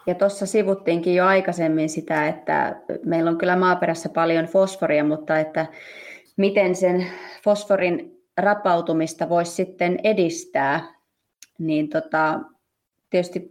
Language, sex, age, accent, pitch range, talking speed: Finnish, female, 20-39, native, 160-185 Hz, 105 wpm